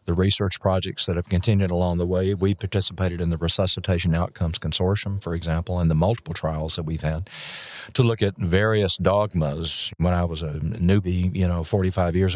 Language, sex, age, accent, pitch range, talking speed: English, male, 50-69, American, 90-110 Hz, 190 wpm